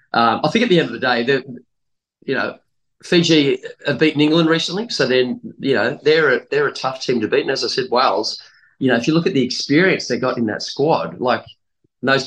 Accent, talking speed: Australian, 235 wpm